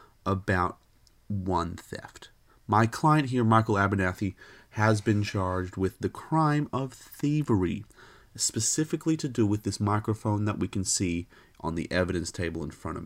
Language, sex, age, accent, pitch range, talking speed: English, male, 30-49, American, 100-135 Hz, 150 wpm